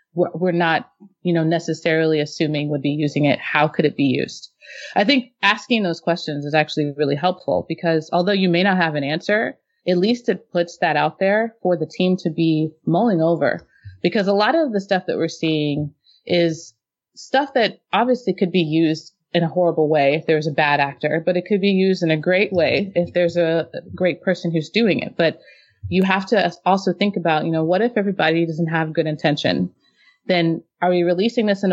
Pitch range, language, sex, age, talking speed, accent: 155-190 Hz, English, female, 30-49, 210 wpm, American